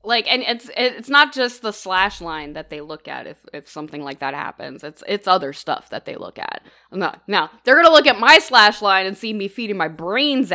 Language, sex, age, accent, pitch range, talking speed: English, female, 20-39, American, 190-285 Hz, 245 wpm